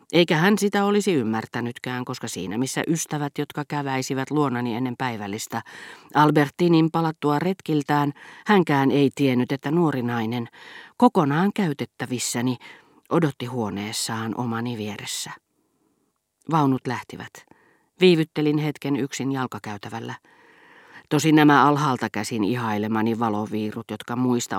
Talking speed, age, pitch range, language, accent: 100 wpm, 40-59, 120-150 Hz, Finnish, native